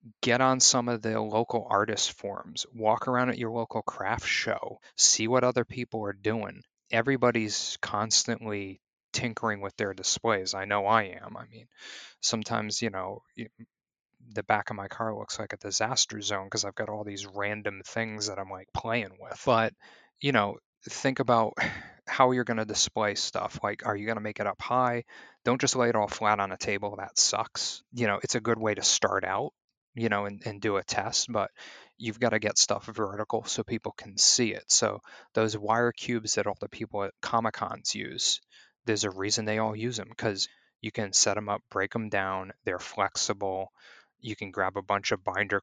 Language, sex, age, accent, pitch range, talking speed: English, male, 20-39, American, 100-115 Hz, 200 wpm